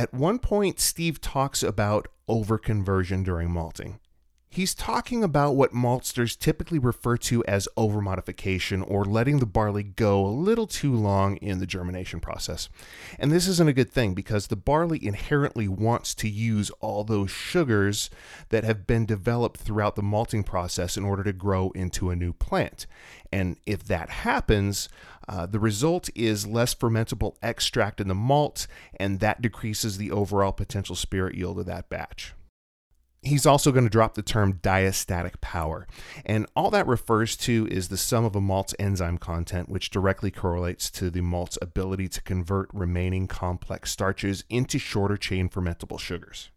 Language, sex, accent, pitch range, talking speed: English, male, American, 95-115 Hz, 165 wpm